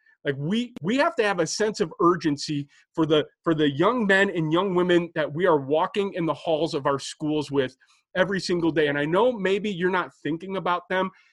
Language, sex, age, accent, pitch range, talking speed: English, male, 30-49, American, 155-195 Hz, 220 wpm